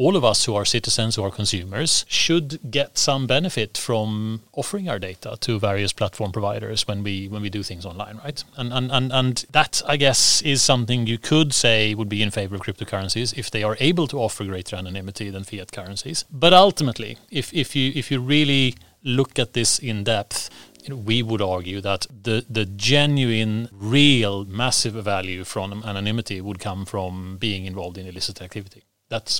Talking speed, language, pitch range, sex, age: 190 wpm, English, 100-125 Hz, male, 30-49